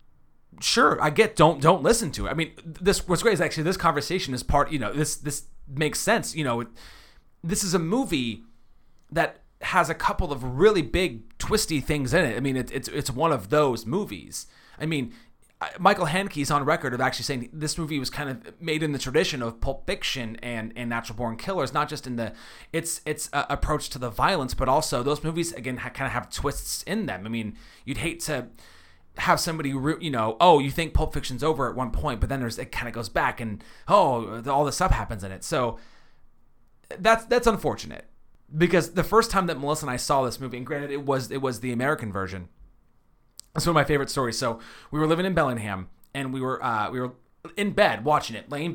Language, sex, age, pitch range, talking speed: English, male, 30-49, 120-165 Hz, 225 wpm